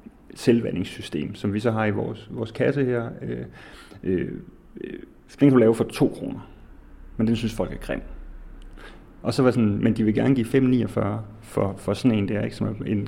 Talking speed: 205 wpm